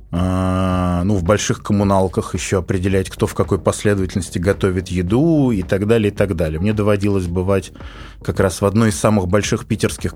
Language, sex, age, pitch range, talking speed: Russian, male, 20-39, 95-115 Hz, 175 wpm